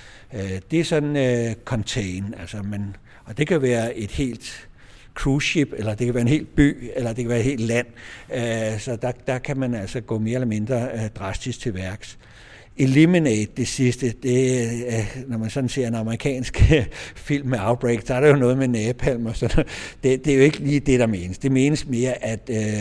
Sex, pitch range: male, 100-125 Hz